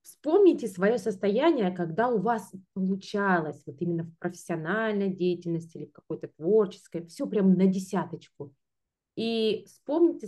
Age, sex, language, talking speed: 20-39, female, Russian, 130 wpm